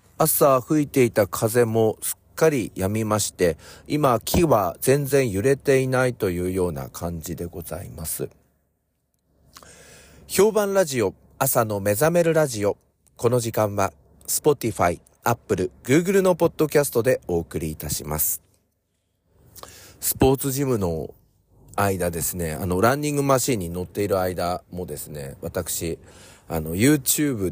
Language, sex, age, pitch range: Japanese, male, 40-59, 85-130 Hz